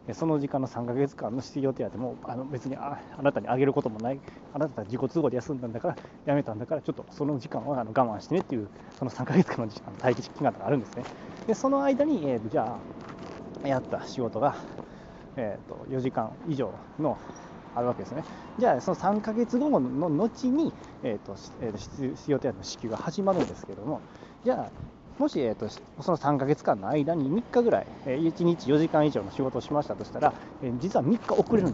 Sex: male